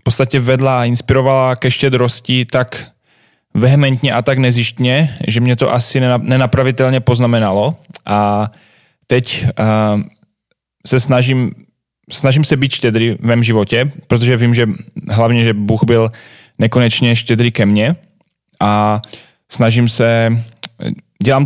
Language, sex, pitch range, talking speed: Slovak, male, 110-130 Hz, 125 wpm